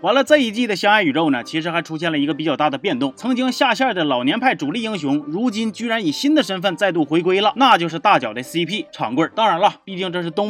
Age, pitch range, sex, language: 30-49, 170-270 Hz, male, Chinese